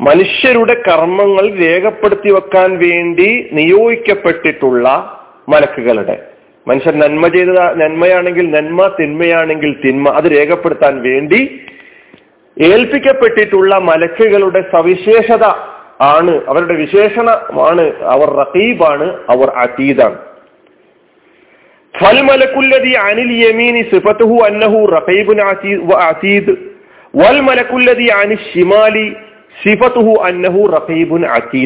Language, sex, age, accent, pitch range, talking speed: Malayalam, male, 40-59, native, 165-230 Hz, 60 wpm